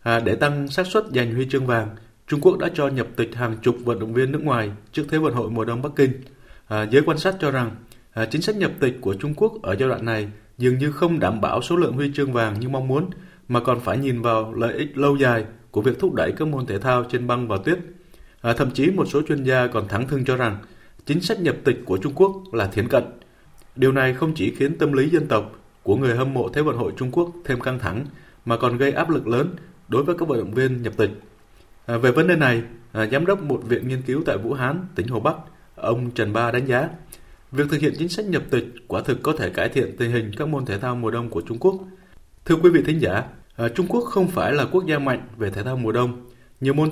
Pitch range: 115-150 Hz